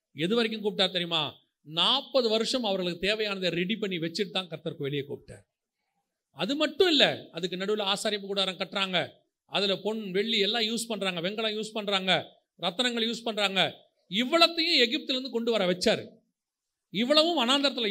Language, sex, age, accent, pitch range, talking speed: Tamil, male, 40-59, native, 190-255 Hz, 145 wpm